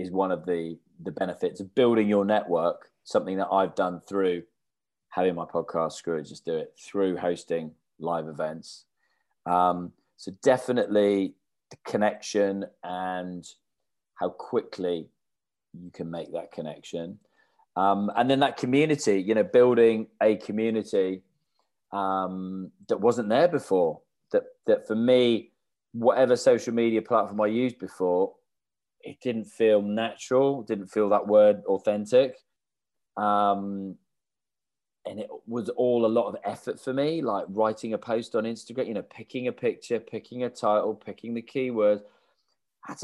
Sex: male